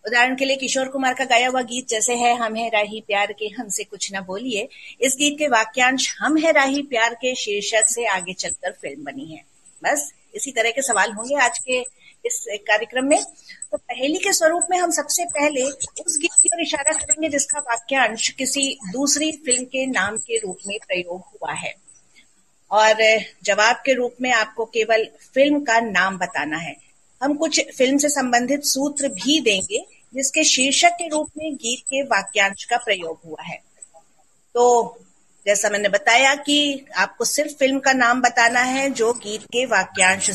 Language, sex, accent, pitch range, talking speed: Hindi, female, native, 220-285 Hz, 180 wpm